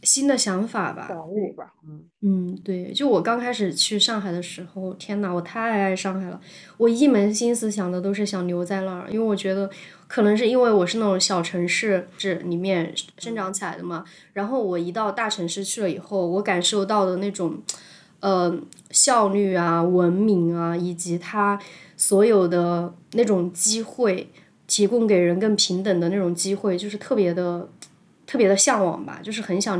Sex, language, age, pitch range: female, Chinese, 20-39, 180-210 Hz